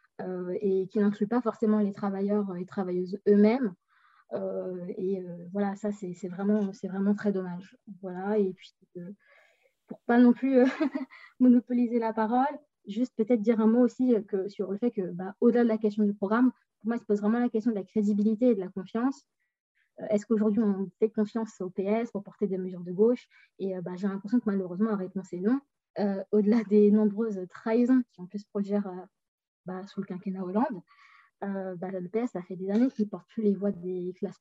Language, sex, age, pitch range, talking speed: French, female, 20-39, 190-230 Hz, 220 wpm